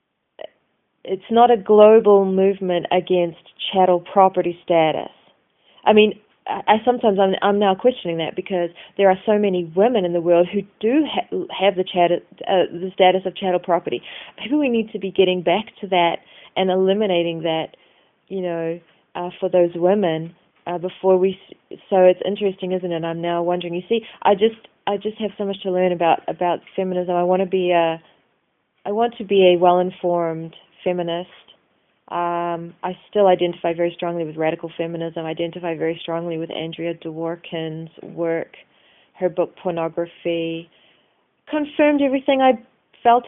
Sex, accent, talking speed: female, Australian, 165 wpm